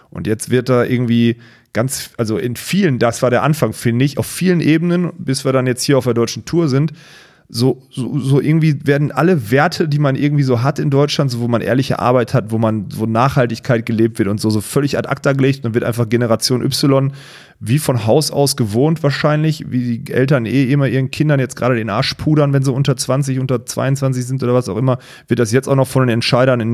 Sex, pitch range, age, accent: male, 115-140 Hz, 30-49, German